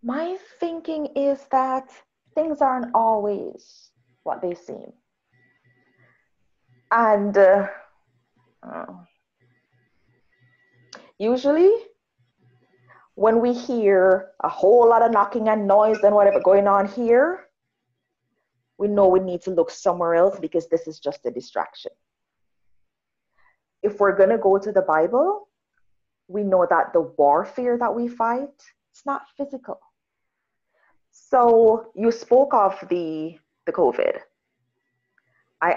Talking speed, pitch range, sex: 115 wpm, 165-245 Hz, female